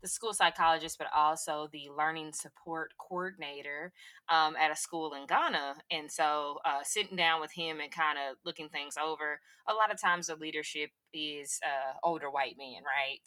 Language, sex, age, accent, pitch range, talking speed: English, female, 20-39, American, 145-165 Hz, 180 wpm